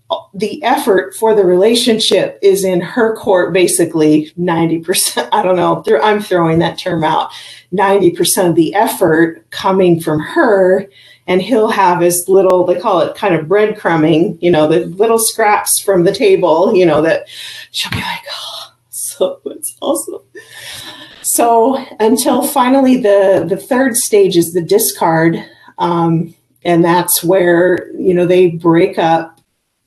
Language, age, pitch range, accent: English, 40-59, 170-210 Hz, American